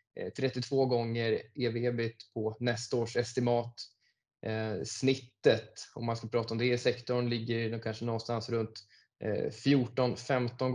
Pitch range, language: 115-125 Hz, Swedish